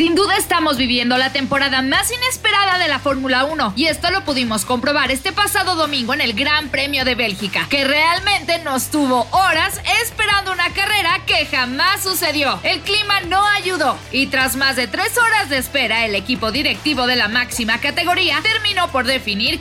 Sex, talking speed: female, 180 wpm